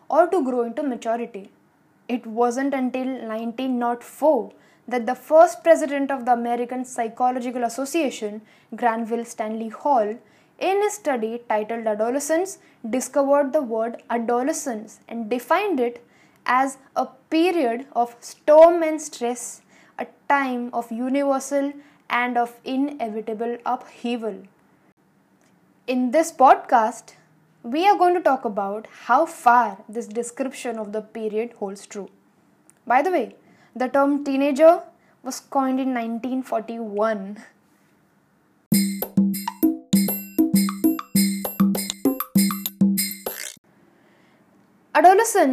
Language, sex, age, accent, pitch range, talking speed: English, female, 10-29, Indian, 225-285 Hz, 100 wpm